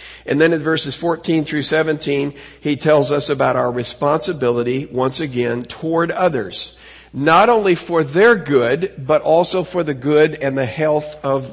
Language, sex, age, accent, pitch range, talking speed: English, male, 50-69, American, 140-175 Hz, 160 wpm